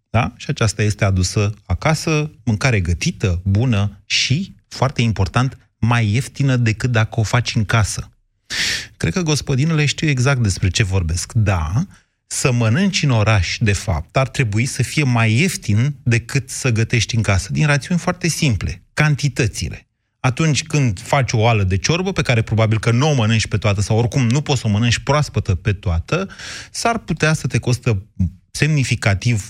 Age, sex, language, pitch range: 30-49, male, Romanian, 105-145 Hz